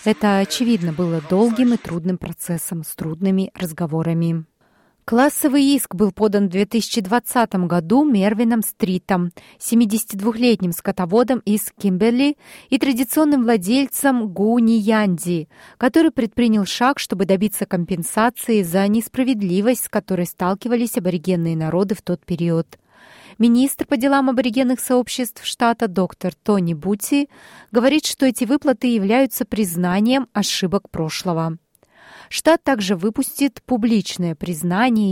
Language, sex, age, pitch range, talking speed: Russian, female, 30-49, 180-245 Hz, 115 wpm